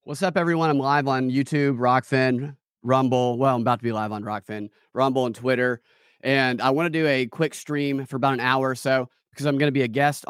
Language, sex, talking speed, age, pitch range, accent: English, male, 240 wpm, 30-49, 120-155 Hz, American